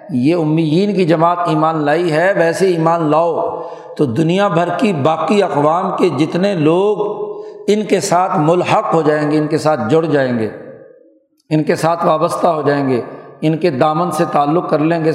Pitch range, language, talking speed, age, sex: 145-180 Hz, Urdu, 185 wpm, 50-69, male